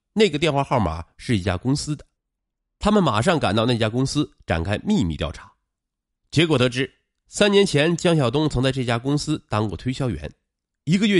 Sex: male